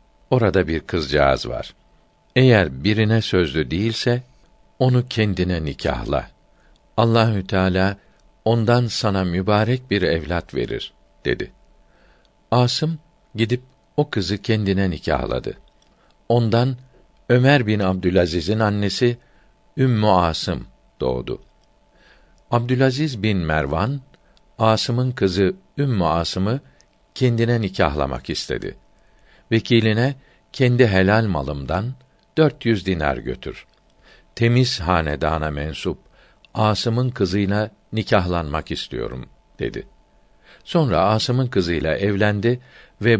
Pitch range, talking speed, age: 90-120 Hz, 90 wpm, 60-79